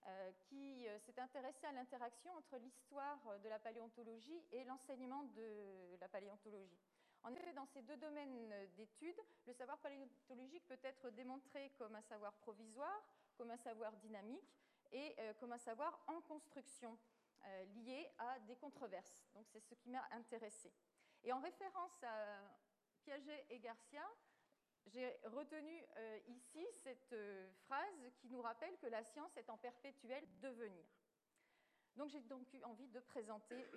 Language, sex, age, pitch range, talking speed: French, female, 40-59, 220-280 Hz, 150 wpm